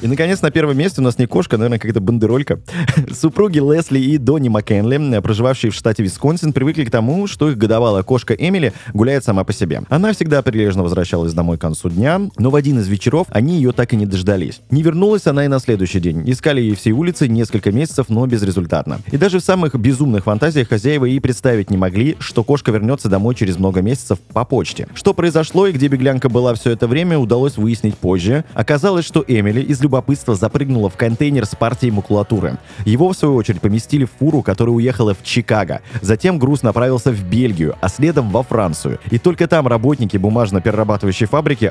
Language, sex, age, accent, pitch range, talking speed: Russian, male, 20-39, native, 105-145 Hz, 195 wpm